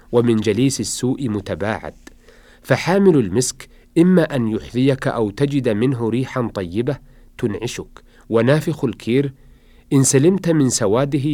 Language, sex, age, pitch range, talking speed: Arabic, male, 40-59, 110-135 Hz, 110 wpm